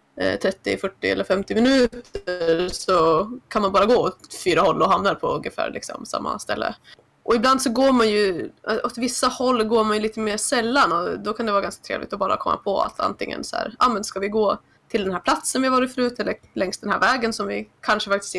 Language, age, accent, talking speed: Swedish, 20-39, native, 235 wpm